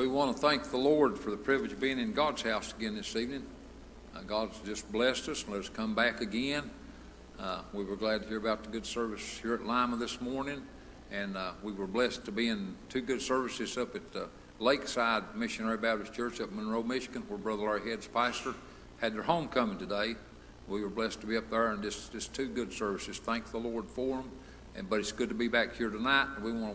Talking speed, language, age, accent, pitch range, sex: 230 wpm, English, 60-79, American, 110-140 Hz, male